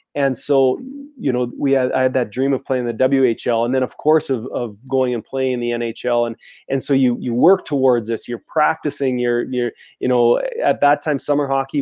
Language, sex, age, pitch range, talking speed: English, male, 20-39, 125-140 Hz, 230 wpm